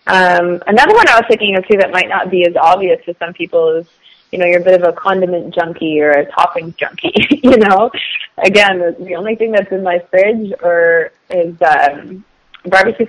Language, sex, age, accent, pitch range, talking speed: English, female, 20-39, American, 175-200 Hz, 205 wpm